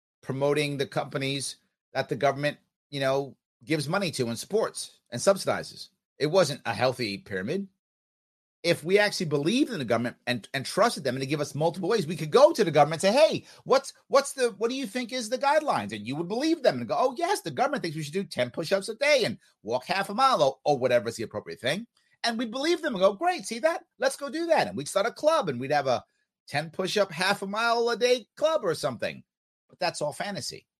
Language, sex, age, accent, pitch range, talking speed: English, male, 30-49, American, 125-205 Hz, 240 wpm